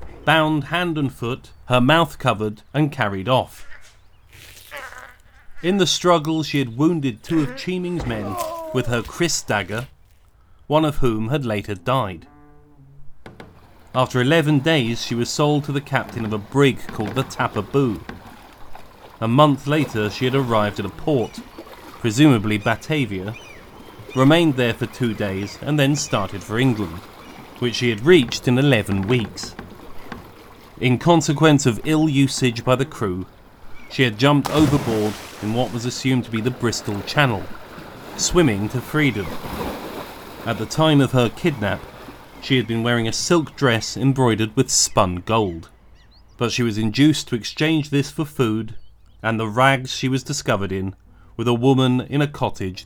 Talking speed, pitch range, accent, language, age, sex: 155 wpm, 105-145 Hz, British, English, 40-59, male